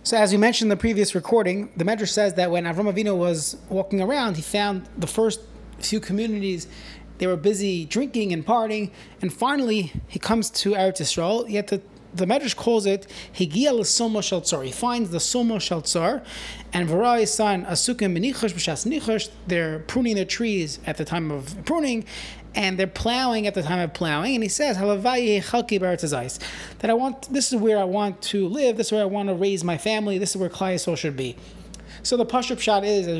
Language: English